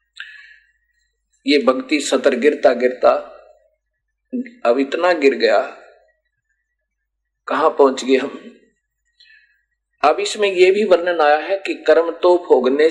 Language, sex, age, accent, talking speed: Hindi, male, 50-69, native, 110 wpm